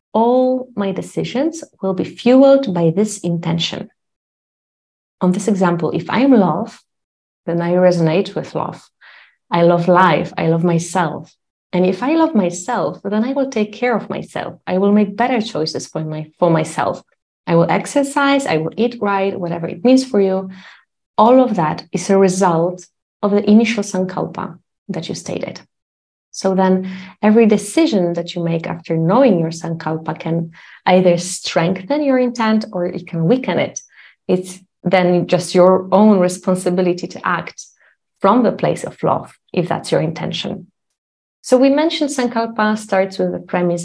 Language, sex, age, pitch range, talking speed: English, female, 30-49, 175-215 Hz, 160 wpm